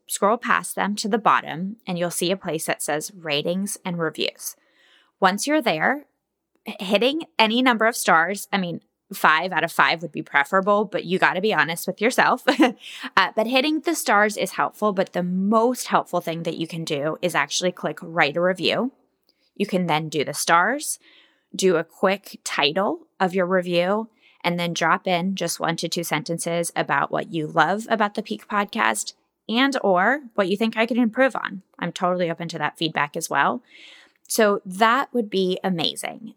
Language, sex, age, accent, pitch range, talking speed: English, female, 20-39, American, 170-225 Hz, 190 wpm